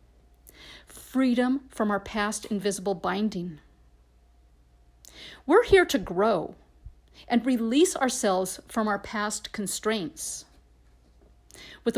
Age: 50-69